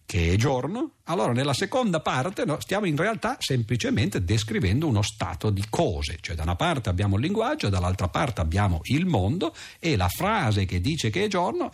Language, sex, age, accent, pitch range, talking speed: Italian, male, 50-69, native, 90-120 Hz, 190 wpm